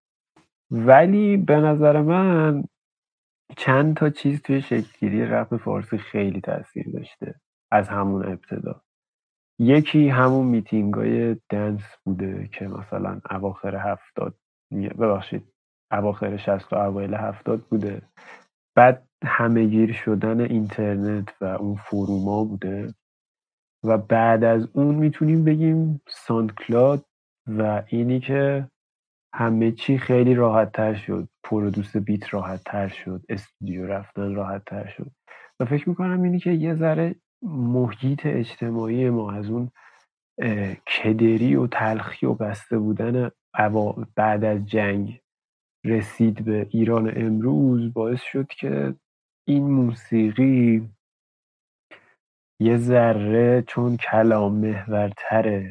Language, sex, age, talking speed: Persian, male, 30-49, 110 wpm